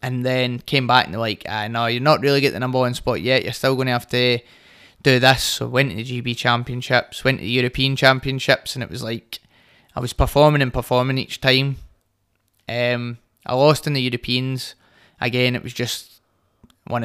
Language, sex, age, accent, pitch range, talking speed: English, male, 20-39, British, 120-130 Hz, 210 wpm